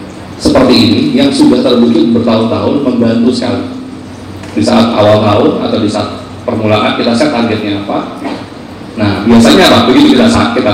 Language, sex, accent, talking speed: Indonesian, male, native, 140 wpm